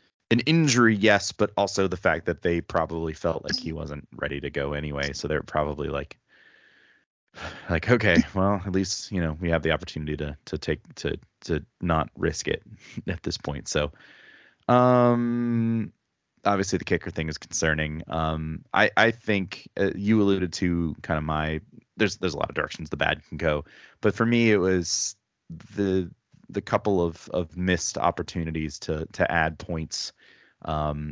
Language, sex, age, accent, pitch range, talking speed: English, male, 20-39, American, 75-95 Hz, 175 wpm